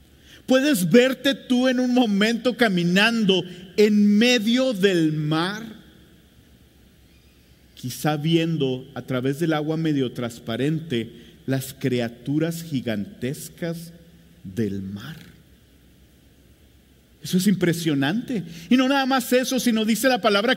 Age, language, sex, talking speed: 50-69, English, male, 105 wpm